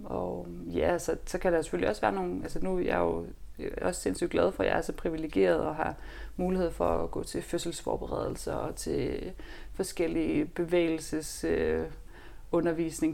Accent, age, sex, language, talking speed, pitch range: native, 30-49, female, Danish, 175 wpm, 155-175 Hz